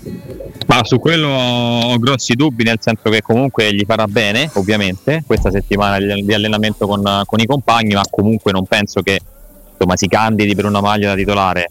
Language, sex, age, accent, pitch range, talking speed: Italian, male, 20-39, native, 95-115 Hz, 180 wpm